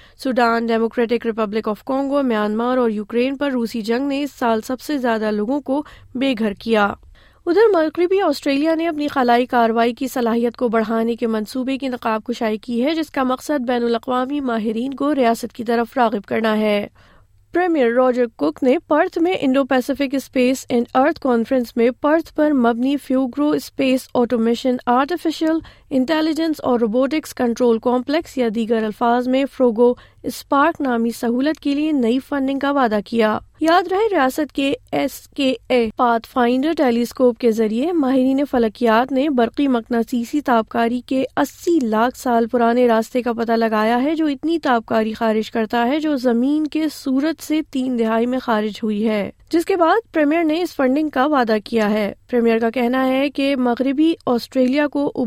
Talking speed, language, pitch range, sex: 170 wpm, Urdu, 235-285 Hz, female